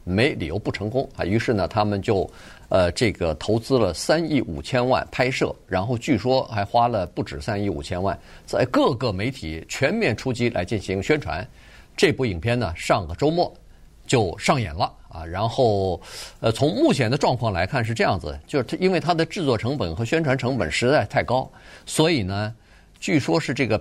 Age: 50-69